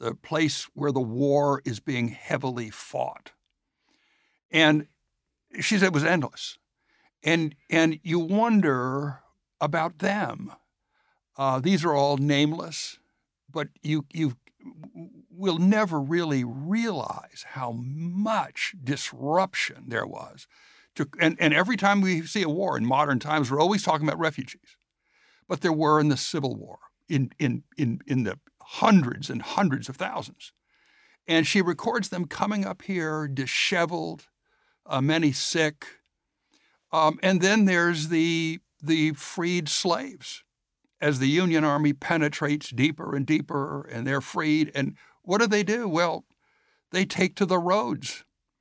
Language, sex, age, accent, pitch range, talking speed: English, male, 60-79, American, 145-175 Hz, 135 wpm